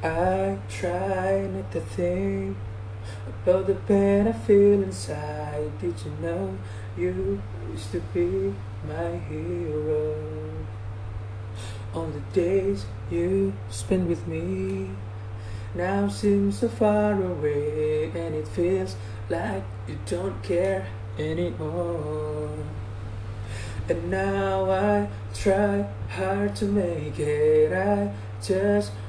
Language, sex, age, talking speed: English, male, 20-39, 105 wpm